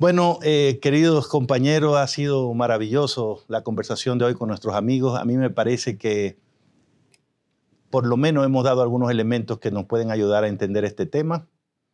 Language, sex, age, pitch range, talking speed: English, male, 50-69, 105-140 Hz, 170 wpm